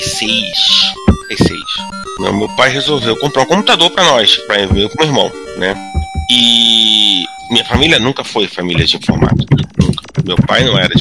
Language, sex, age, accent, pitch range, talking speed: Portuguese, male, 40-59, Brazilian, 120-175 Hz, 170 wpm